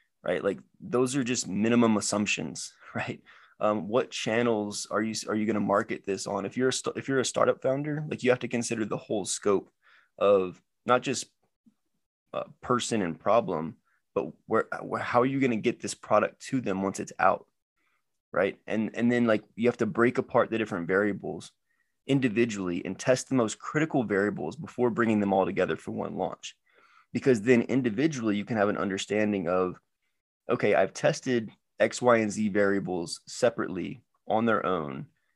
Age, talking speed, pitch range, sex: 20-39, 185 wpm, 105-125 Hz, male